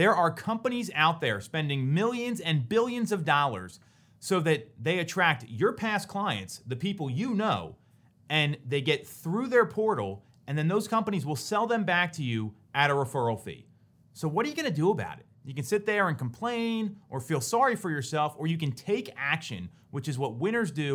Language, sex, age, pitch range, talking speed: English, male, 30-49, 125-190 Hz, 205 wpm